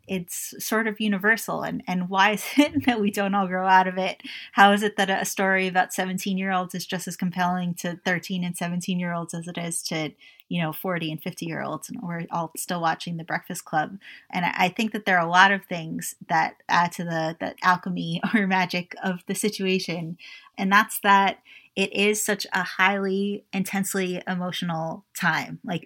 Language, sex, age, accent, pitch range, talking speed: English, female, 20-39, American, 180-205 Hz, 210 wpm